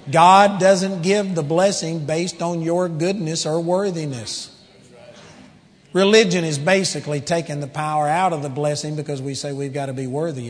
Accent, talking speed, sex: American, 165 wpm, male